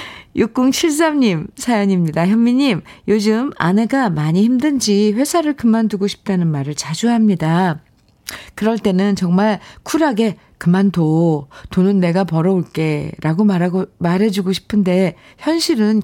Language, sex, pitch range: Korean, female, 165-225 Hz